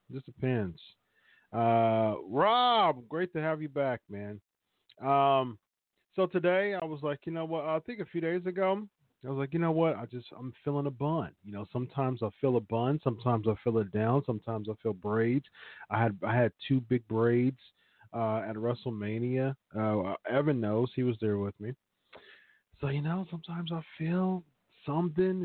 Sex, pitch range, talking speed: male, 115-160 Hz, 185 wpm